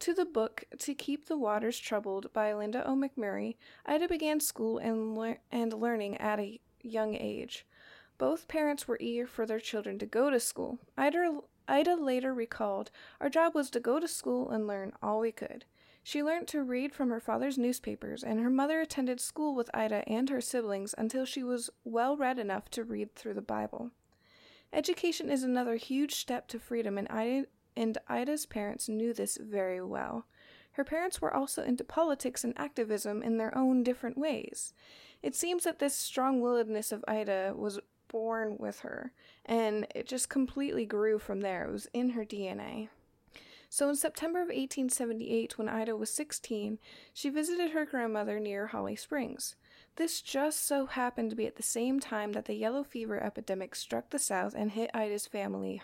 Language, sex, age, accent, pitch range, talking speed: English, female, 20-39, American, 220-275 Hz, 180 wpm